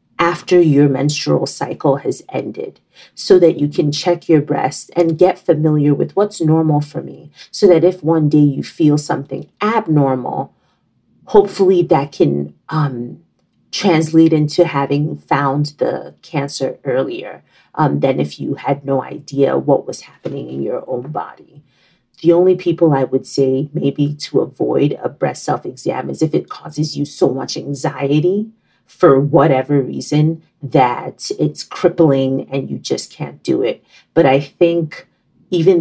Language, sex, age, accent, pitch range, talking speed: English, female, 40-59, American, 140-165 Hz, 150 wpm